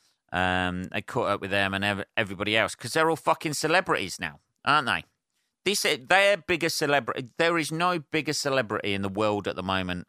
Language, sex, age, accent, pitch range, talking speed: English, male, 40-59, British, 95-135 Hz, 195 wpm